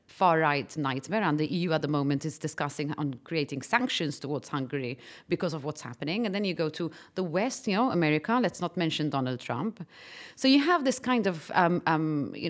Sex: female